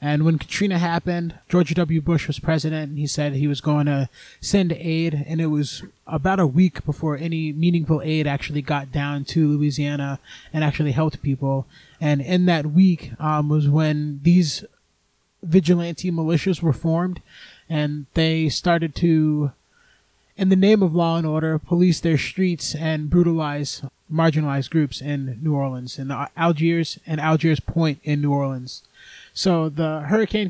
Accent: American